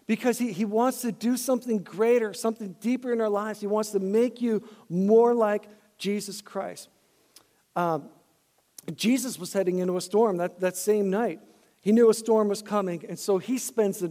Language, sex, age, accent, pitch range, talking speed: English, male, 50-69, American, 180-230 Hz, 185 wpm